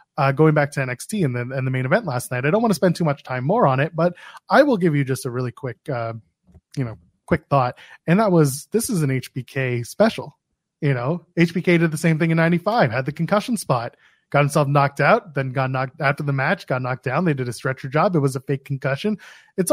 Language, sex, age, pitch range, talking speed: English, male, 20-39, 140-190 Hz, 255 wpm